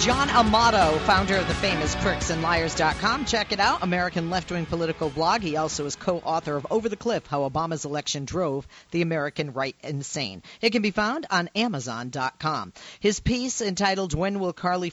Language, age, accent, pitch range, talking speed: English, 40-59, American, 150-200 Hz, 170 wpm